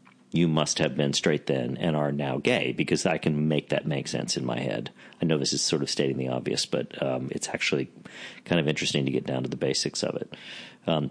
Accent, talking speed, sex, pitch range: American, 245 wpm, male, 65-80 Hz